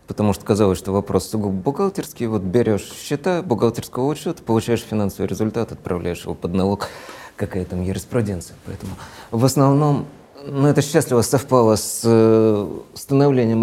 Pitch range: 90-115 Hz